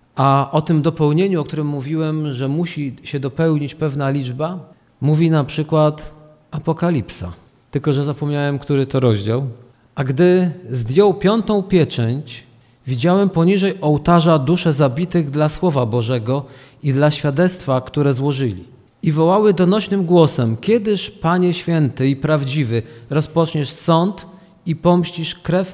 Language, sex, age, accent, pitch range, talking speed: Polish, male, 40-59, native, 130-165 Hz, 130 wpm